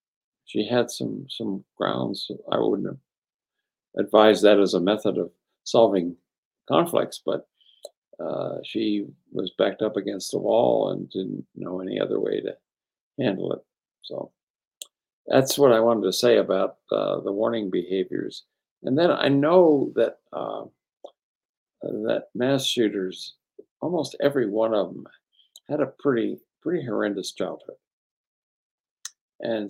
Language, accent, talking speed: English, American, 135 wpm